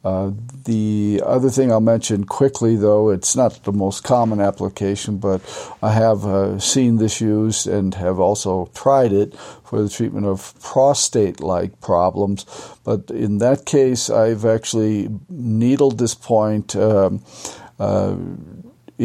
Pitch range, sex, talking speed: 100-115 Hz, male, 135 wpm